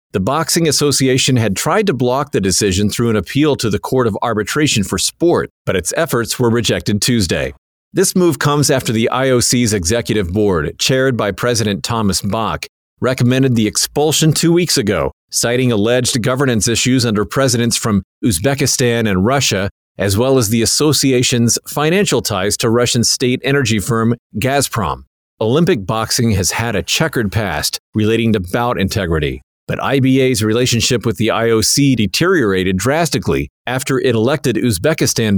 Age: 40-59